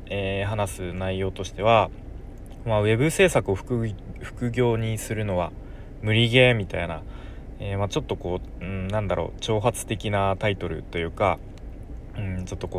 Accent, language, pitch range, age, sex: native, Japanese, 95-115 Hz, 20-39, male